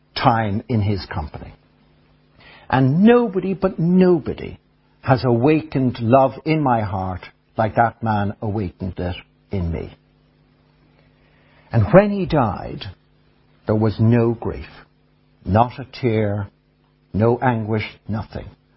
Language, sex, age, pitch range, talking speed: English, male, 60-79, 110-155 Hz, 110 wpm